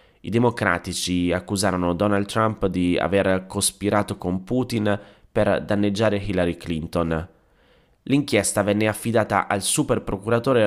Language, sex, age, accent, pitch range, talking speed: Italian, male, 30-49, native, 95-115 Hz, 110 wpm